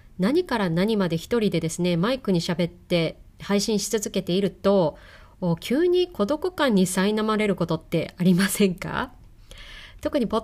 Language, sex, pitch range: Japanese, female, 185-280 Hz